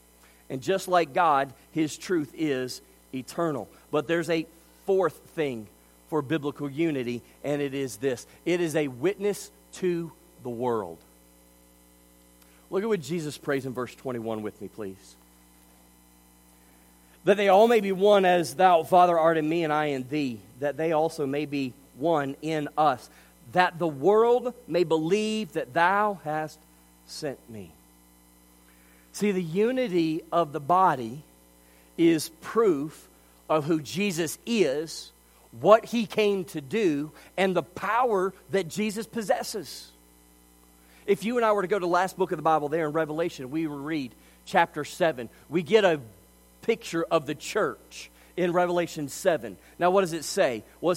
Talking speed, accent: 155 wpm, American